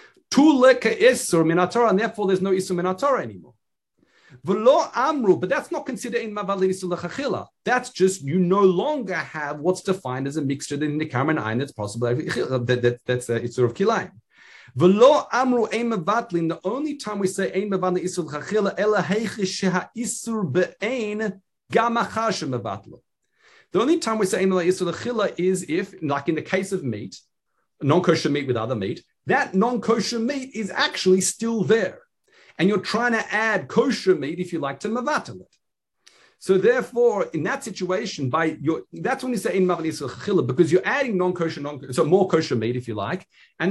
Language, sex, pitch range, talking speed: English, male, 165-225 Hz, 185 wpm